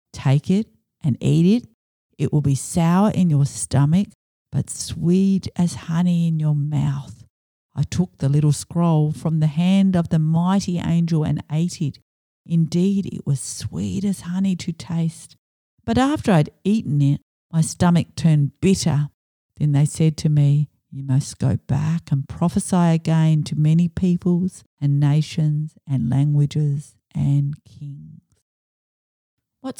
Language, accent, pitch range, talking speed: English, Australian, 145-175 Hz, 145 wpm